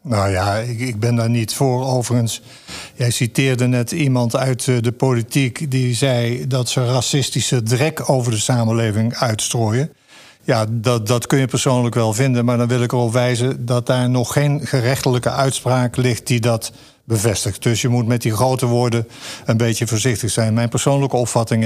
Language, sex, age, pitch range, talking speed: Dutch, male, 50-69, 115-135 Hz, 175 wpm